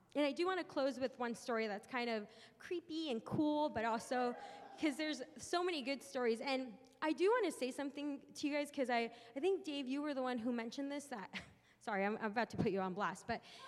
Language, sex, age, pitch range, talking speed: English, female, 20-39, 220-275 Hz, 245 wpm